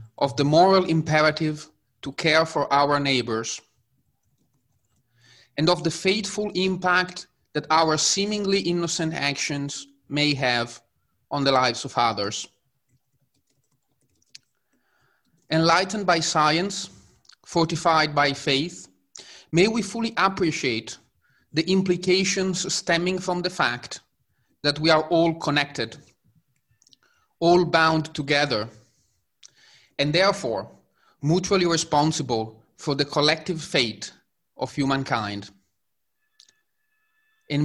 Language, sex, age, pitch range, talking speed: English, male, 30-49, 135-180 Hz, 95 wpm